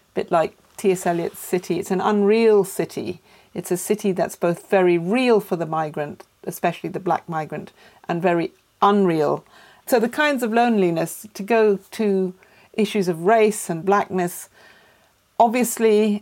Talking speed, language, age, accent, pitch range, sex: 150 wpm, English, 50-69, British, 170-205 Hz, female